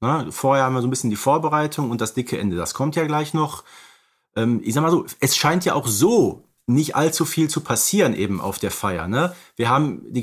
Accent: German